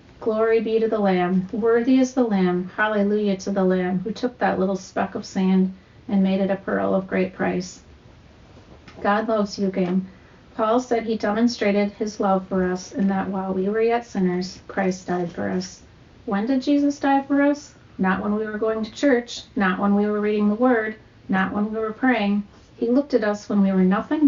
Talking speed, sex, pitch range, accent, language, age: 210 wpm, female, 185-225 Hz, American, English, 40-59